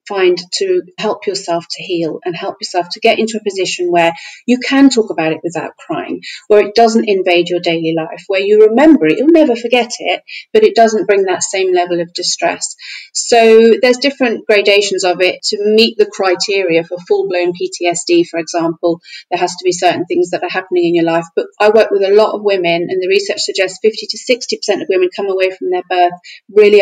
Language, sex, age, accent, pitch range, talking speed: English, female, 40-59, British, 175-230 Hz, 215 wpm